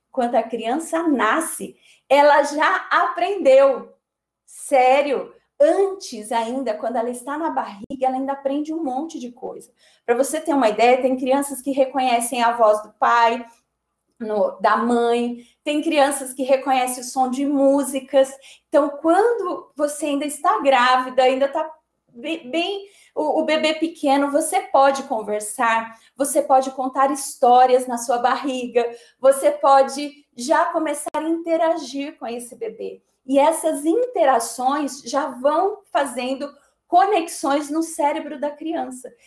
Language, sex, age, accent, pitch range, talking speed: Portuguese, female, 30-49, Brazilian, 255-310 Hz, 135 wpm